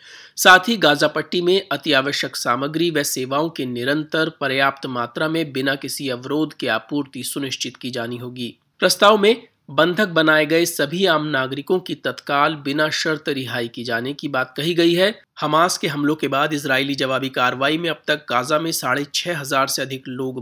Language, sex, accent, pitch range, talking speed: Hindi, male, native, 130-160 Hz, 175 wpm